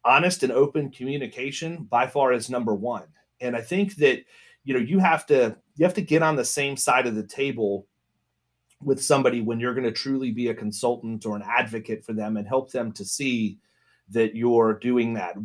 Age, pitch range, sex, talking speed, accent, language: 30-49, 110-140 Hz, male, 205 wpm, American, English